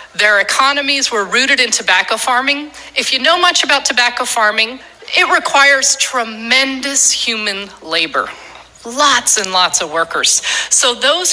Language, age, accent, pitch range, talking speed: English, 40-59, American, 195-275 Hz, 140 wpm